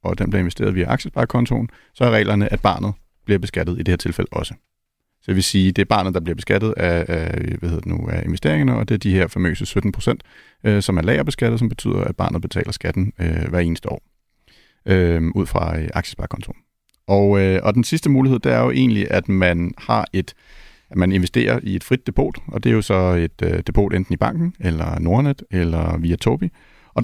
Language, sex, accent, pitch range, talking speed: Danish, male, native, 90-115 Hz, 205 wpm